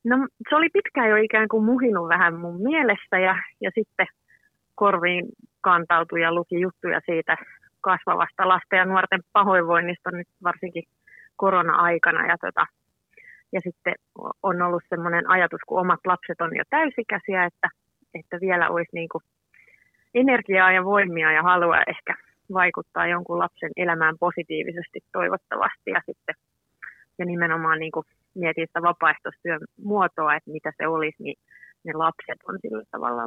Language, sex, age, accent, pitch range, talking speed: Finnish, female, 30-49, native, 165-190 Hz, 140 wpm